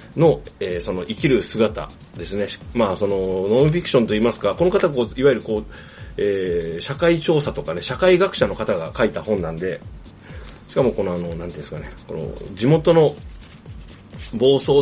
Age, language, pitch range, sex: 30-49, Japanese, 95-145 Hz, male